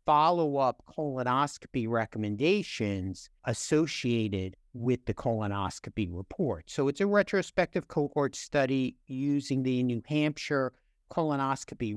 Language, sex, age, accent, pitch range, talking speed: English, male, 50-69, American, 125-150 Hz, 95 wpm